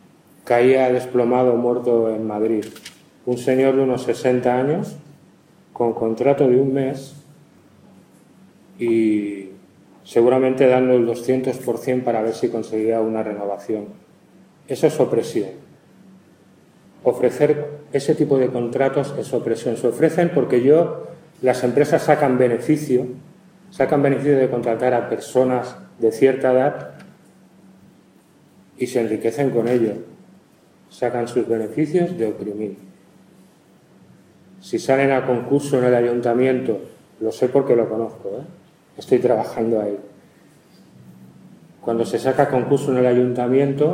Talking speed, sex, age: 120 wpm, male, 30-49